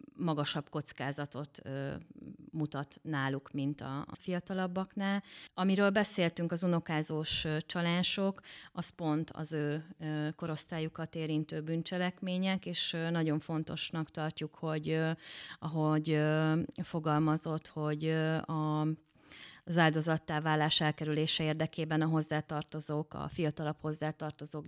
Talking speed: 105 wpm